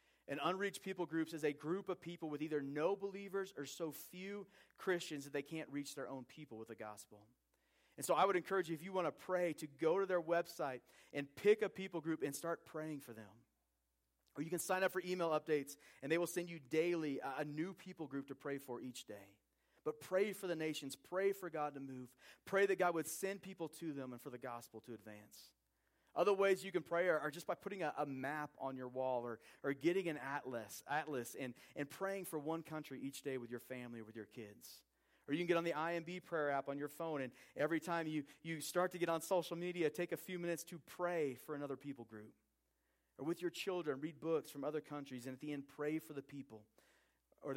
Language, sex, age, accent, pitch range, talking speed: English, male, 30-49, American, 130-170 Hz, 235 wpm